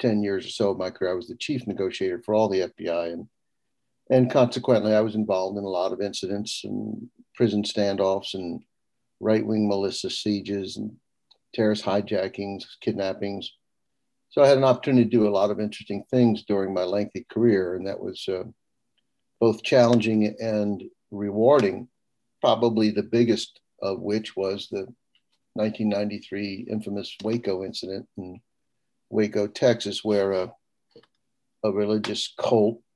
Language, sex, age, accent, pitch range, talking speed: English, male, 60-79, American, 100-110 Hz, 145 wpm